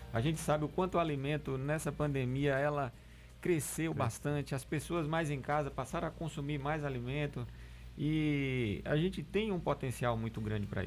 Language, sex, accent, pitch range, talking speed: Portuguese, male, Brazilian, 120-160 Hz, 170 wpm